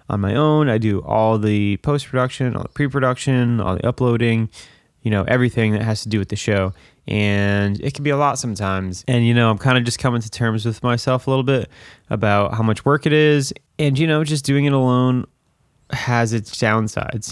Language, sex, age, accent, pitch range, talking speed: English, male, 20-39, American, 105-125 Hz, 215 wpm